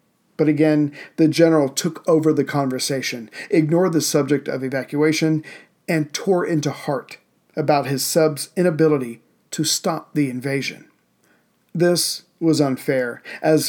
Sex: male